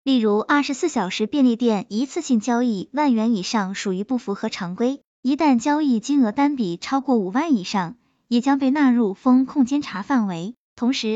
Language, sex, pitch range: Chinese, male, 215-280 Hz